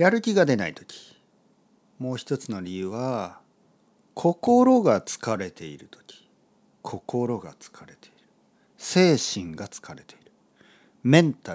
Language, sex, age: Japanese, male, 50-69